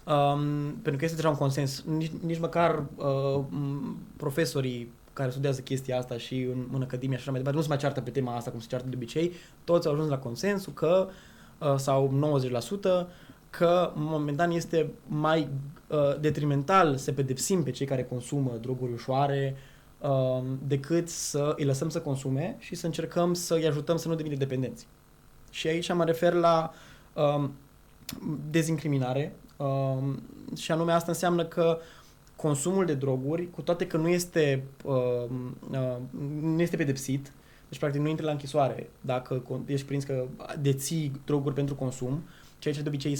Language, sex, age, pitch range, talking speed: Romanian, male, 20-39, 135-165 Hz, 170 wpm